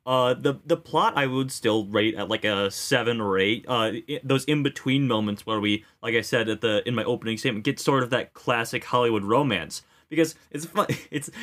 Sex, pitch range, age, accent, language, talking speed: male, 110-140 Hz, 20-39, American, English, 220 wpm